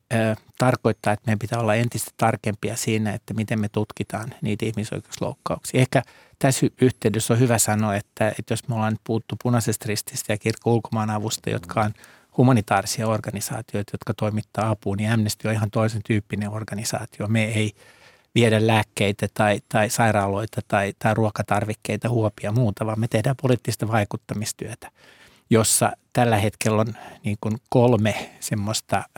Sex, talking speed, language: male, 140 wpm, Finnish